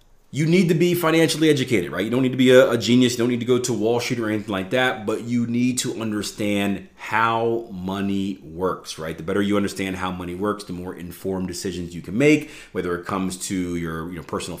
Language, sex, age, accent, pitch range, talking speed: English, male, 30-49, American, 90-120 Hz, 230 wpm